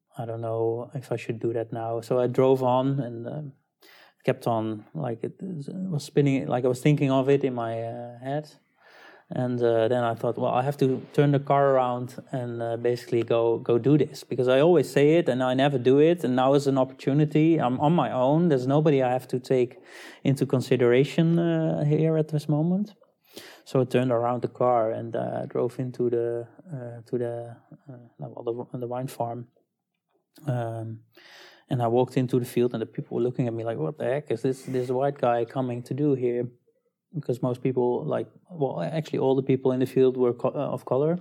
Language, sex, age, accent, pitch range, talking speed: English, male, 20-39, Dutch, 120-140 Hz, 215 wpm